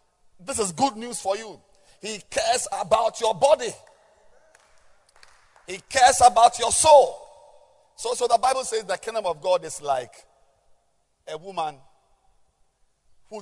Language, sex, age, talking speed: English, male, 50-69, 135 wpm